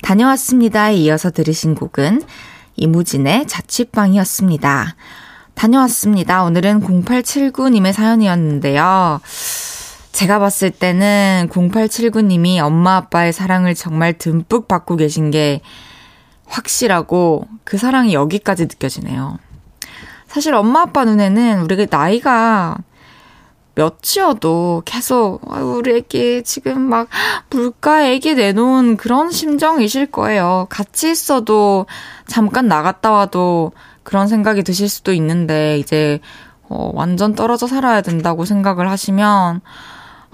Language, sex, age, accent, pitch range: Korean, female, 20-39, native, 175-235 Hz